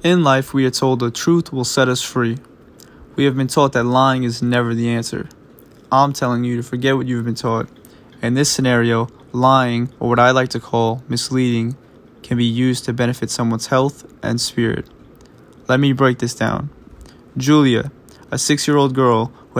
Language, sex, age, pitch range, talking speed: English, male, 20-39, 115-135 Hz, 185 wpm